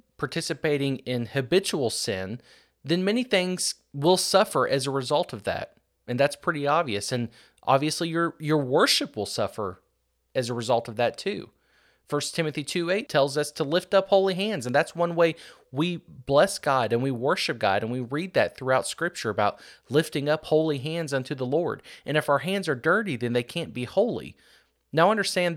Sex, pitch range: male, 125-165 Hz